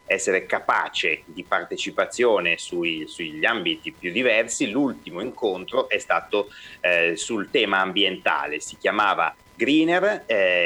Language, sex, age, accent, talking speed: Italian, male, 30-49, native, 120 wpm